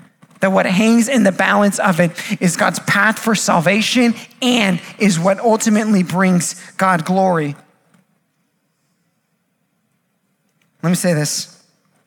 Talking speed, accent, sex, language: 120 wpm, American, male, English